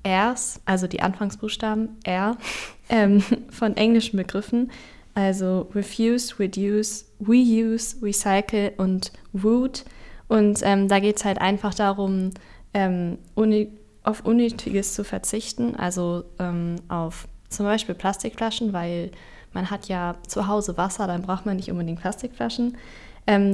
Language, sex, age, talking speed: German, female, 10-29, 125 wpm